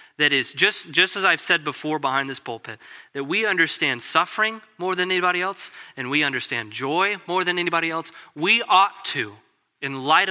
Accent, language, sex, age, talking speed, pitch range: American, English, male, 30-49, 185 wpm, 135-175 Hz